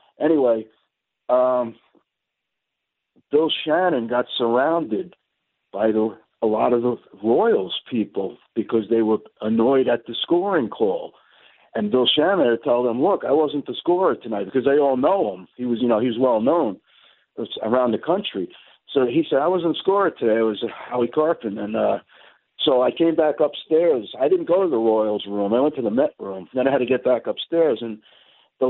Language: English